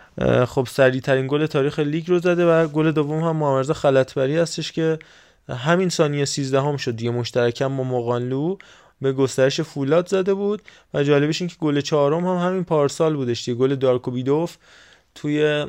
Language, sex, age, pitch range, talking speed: Persian, male, 20-39, 125-145 Hz, 165 wpm